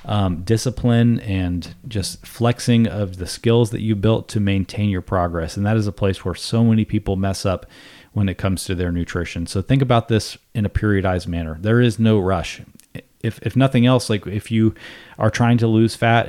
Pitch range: 95-115 Hz